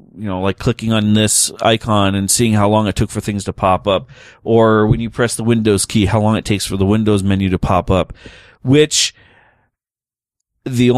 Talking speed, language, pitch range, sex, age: 210 wpm, English, 100-120 Hz, male, 30-49